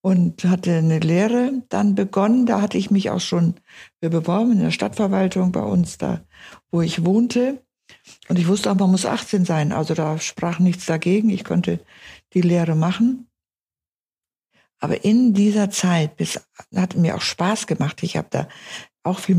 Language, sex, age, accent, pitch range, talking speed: German, female, 60-79, German, 170-205 Hz, 170 wpm